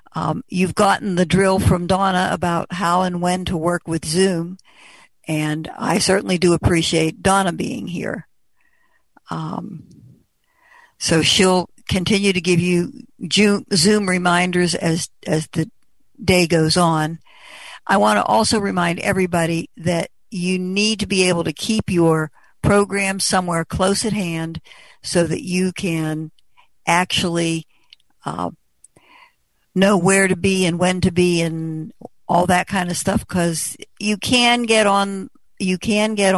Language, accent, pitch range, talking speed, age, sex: English, American, 170-195 Hz, 140 wpm, 60-79, female